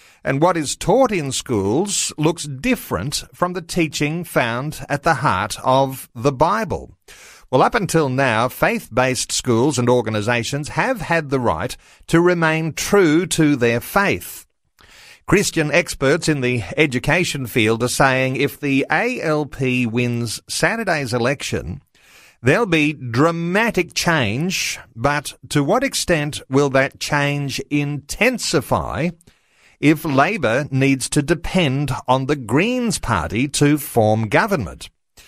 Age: 50-69